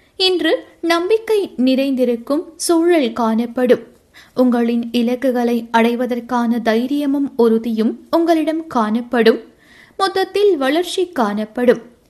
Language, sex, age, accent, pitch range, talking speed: Tamil, female, 20-39, native, 230-310 Hz, 75 wpm